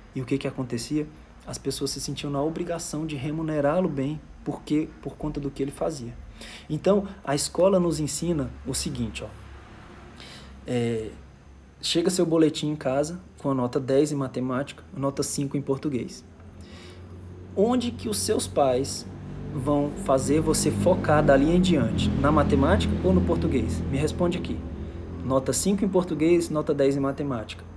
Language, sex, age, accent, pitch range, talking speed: Portuguese, male, 20-39, Brazilian, 115-150 Hz, 155 wpm